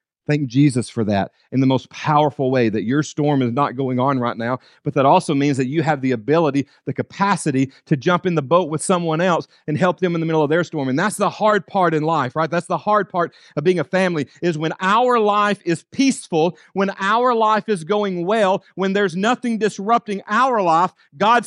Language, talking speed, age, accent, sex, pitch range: English, 225 wpm, 40-59, American, male, 130-205 Hz